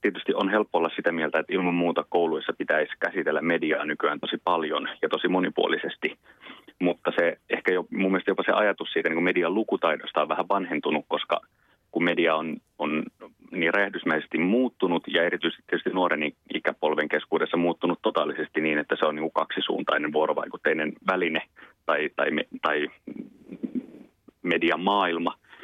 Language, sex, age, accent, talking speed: Finnish, male, 30-49, native, 145 wpm